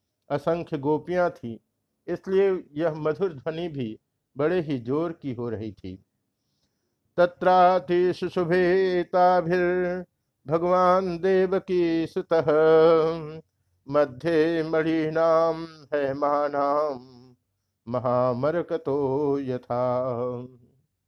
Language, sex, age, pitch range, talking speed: Hindi, male, 50-69, 125-170 Hz, 85 wpm